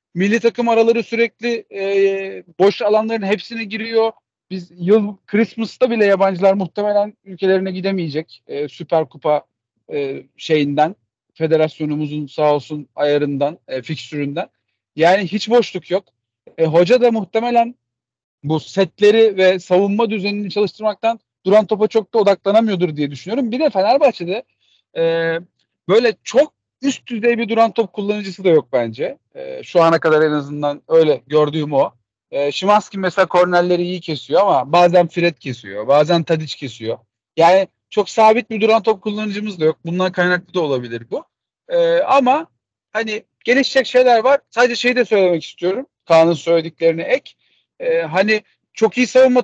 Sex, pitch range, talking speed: male, 160-230 Hz, 145 wpm